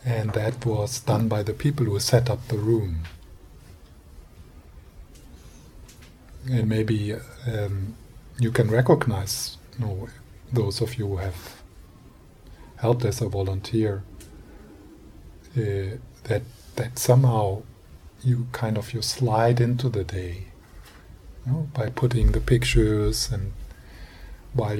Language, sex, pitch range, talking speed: English, male, 95-120 Hz, 110 wpm